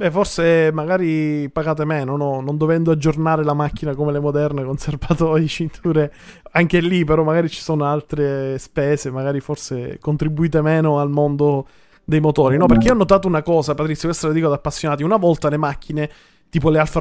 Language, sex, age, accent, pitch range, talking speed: Italian, male, 20-39, native, 145-180 Hz, 185 wpm